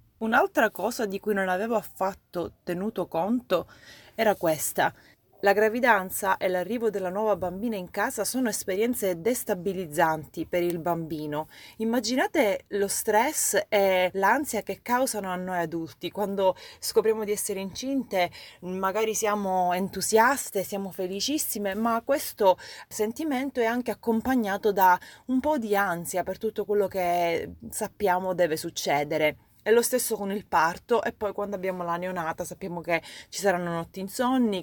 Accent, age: native, 30-49